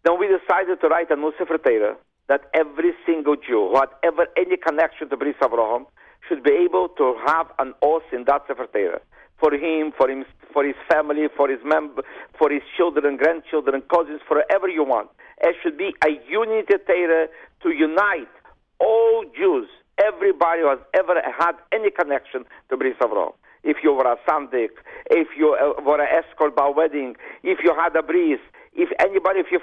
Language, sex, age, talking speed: English, male, 50-69, 185 wpm